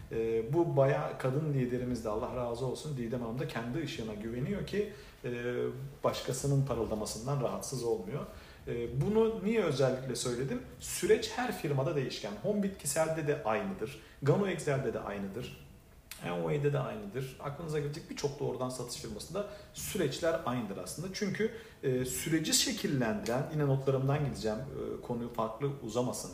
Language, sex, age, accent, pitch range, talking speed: Turkish, male, 40-59, native, 120-155 Hz, 140 wpm